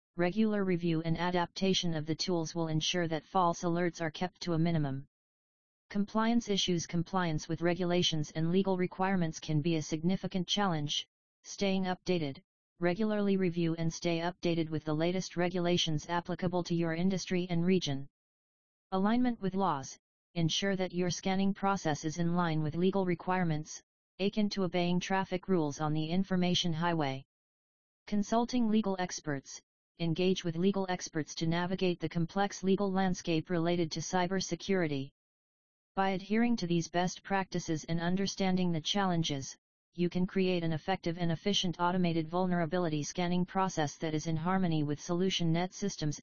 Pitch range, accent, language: 165-190 Hz, American, English